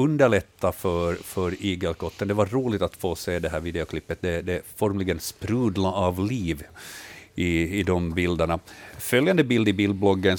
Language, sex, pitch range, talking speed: Swedish, male, 90-110 Hz, 160 wpm